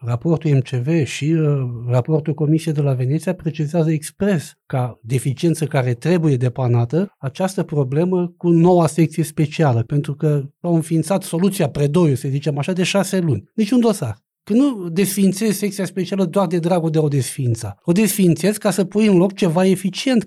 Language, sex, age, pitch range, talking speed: Romanian, male, 60-79, 150-195 Hz, 165 wpm